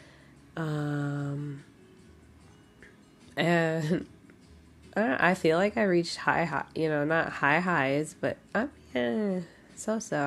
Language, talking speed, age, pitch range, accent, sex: English, 130 wpm, 20-39, 140-170 Hz, American, female